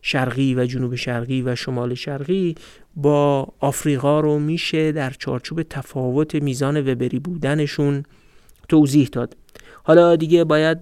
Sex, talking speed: male, 120 wpm